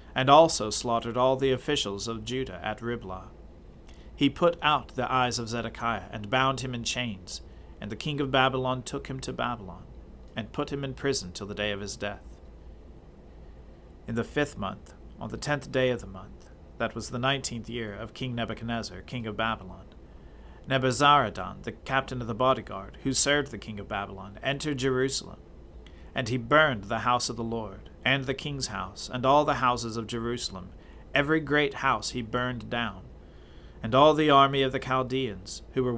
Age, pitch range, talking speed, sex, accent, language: 40-59, 95-130 Hz, 185 wpm, male, American, English